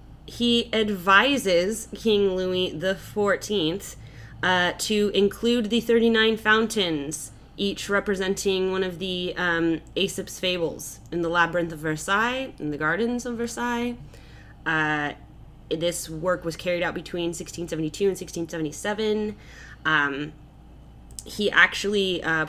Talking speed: 115 wpm